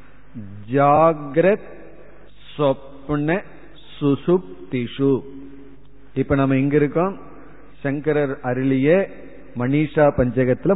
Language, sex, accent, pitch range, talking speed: Tamil, male, native, 135-170 Hz, 55 wpm